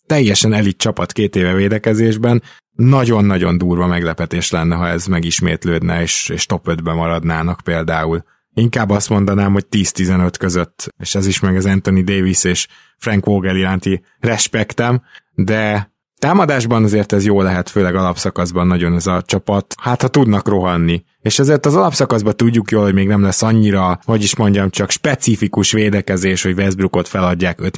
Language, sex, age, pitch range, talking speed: Hungarian, male, 20-39, 95-115 Hz, 160 wpm